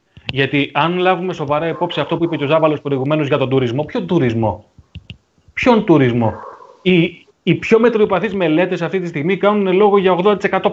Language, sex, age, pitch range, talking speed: Greek, male, 30-49, 150-200 Hz, 175 wpm